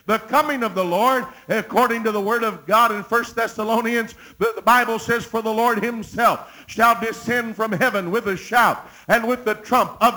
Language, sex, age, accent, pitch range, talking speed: English, male, 50-69, American, 220-245 Hz, 200 wpm